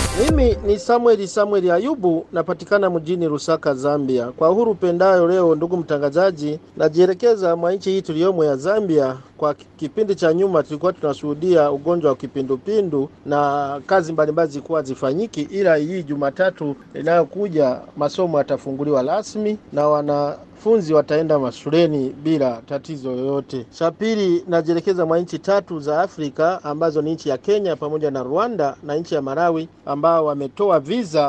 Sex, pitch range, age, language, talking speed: male, 145-175 Hz, 50-69, Swahili, 140 wpm